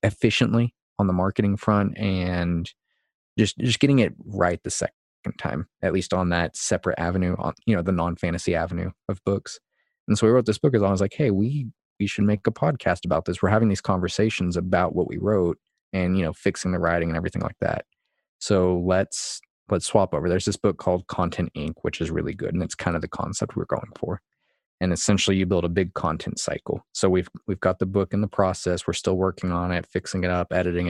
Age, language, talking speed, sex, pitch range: 20-39, English, 225 wpm, male, 85-100 Hz